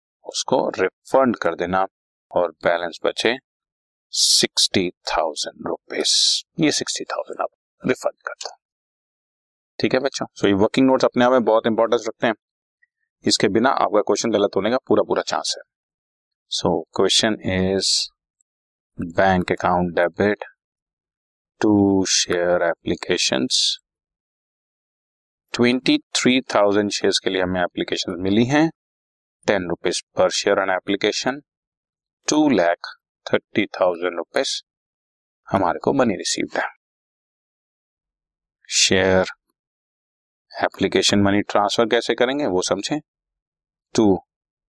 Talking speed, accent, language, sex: 115 wpm, native, Hindi, male